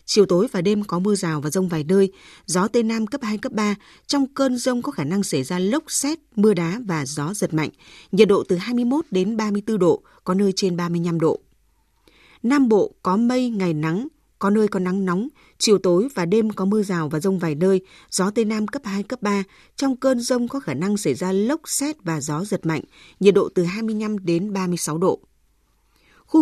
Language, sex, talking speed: Vietnamese, female, 220 wpm